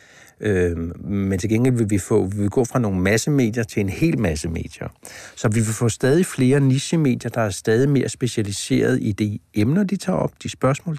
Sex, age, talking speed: male, 60-79, 190 wpm